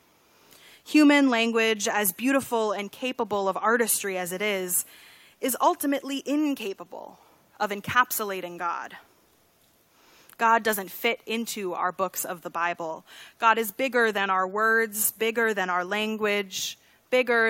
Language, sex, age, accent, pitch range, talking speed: English, female, 20-39, American, 200-235 Hz, 125 wpm